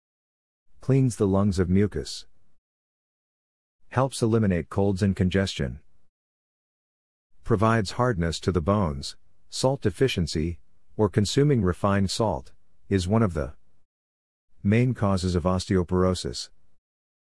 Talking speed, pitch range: 100 wpm, 80-105 Hz